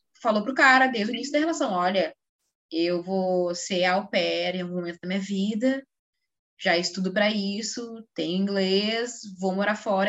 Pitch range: 195-260 Hz